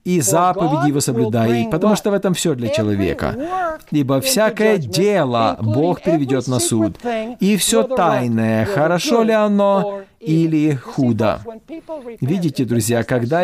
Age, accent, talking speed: 40-59, native, 130 wpm